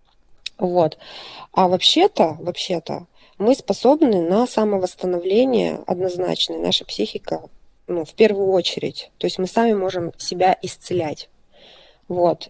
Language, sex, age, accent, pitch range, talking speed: Russian, female, 20-39, native, 170-215 Hz, 110 wpm